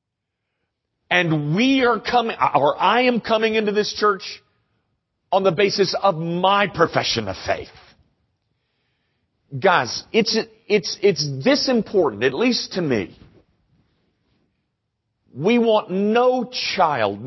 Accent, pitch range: American, 125-205 Hz